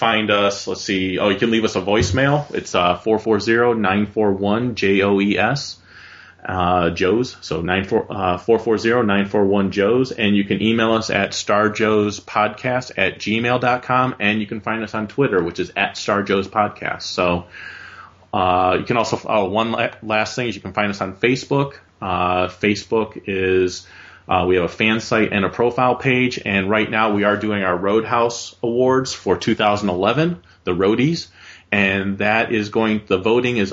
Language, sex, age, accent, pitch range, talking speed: English, male, 30-49, American, 95-115 Hz, 170 wpm